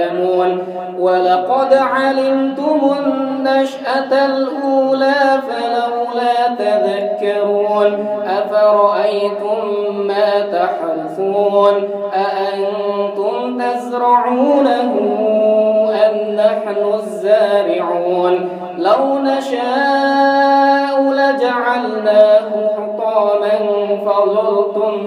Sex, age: male, 20-39